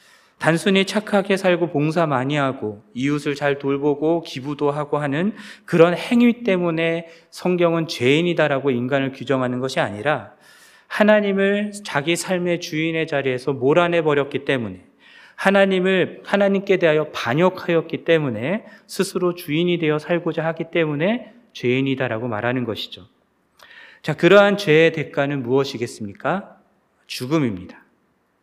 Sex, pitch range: male, 135-175 Hz